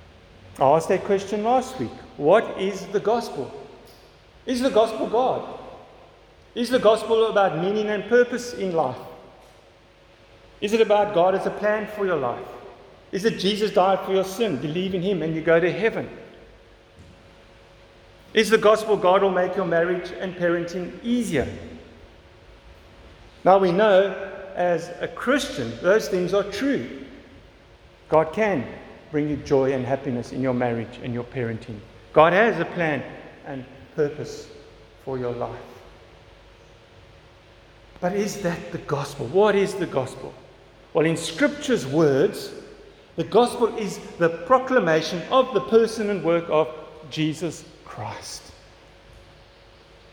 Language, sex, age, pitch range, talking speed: English, male, 50-69, 120-205 Hz, 140 wpm